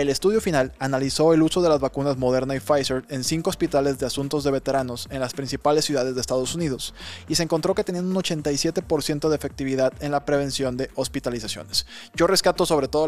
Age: 20-39